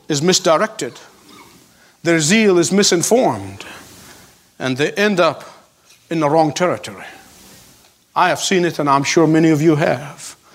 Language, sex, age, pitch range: English, male, 50-69, 170-235 Hz